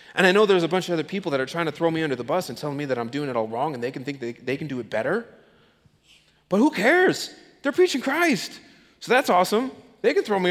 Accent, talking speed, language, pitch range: American, 285 wpm, English, 120-195 Hz